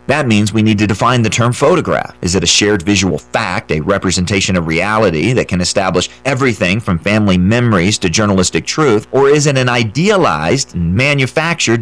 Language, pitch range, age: English, 95-130 Hz, 40-59